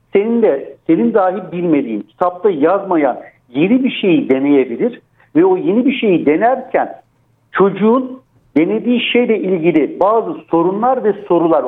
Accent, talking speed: native, 130 wpm